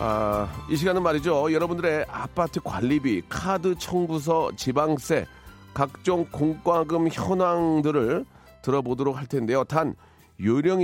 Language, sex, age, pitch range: Korean, male, 40-59, 130-170 Hz